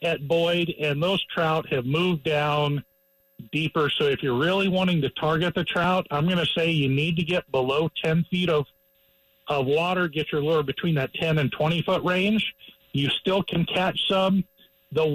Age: 50-69